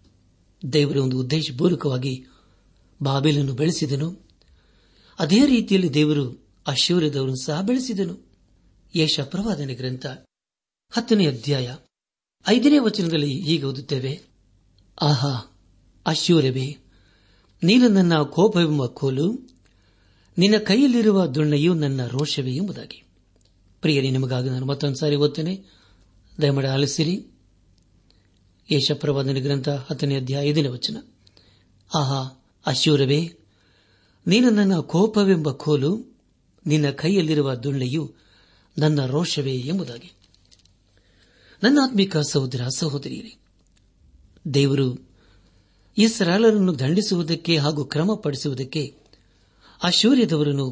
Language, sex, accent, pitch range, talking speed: Kannada, male, native, 100-165 Hz, 75 wpm